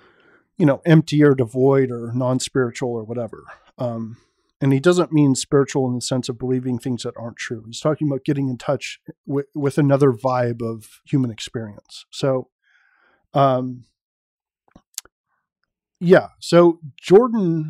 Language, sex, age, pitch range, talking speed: English, male, 40-59, 130-170 Hz, 140 wpm